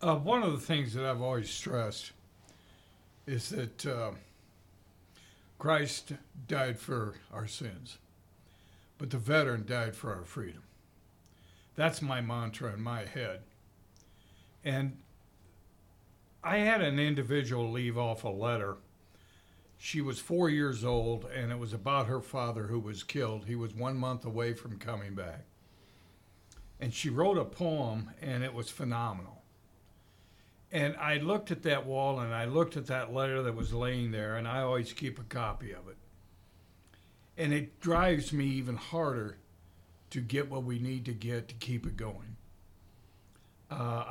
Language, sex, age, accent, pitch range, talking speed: English, male, 60-79, American, 95-135 Hz, 150 wpm